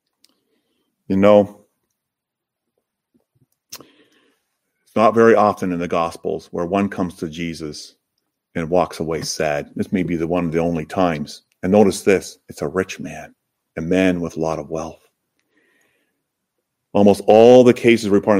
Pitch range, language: 95-155 Hz, English